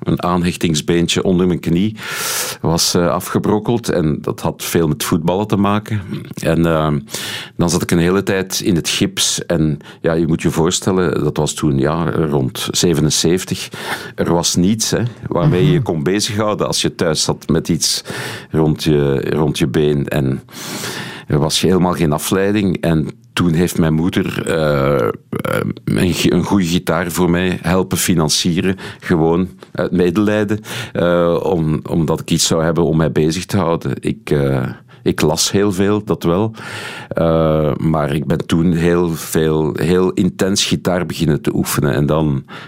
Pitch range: 75-95 Hz